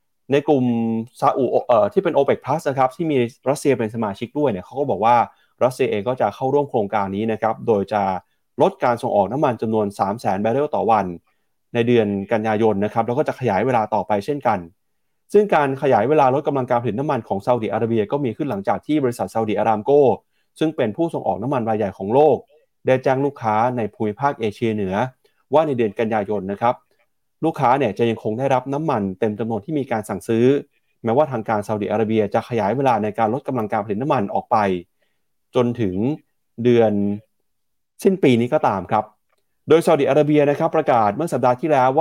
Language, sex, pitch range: Thai, male, 110-140 Hz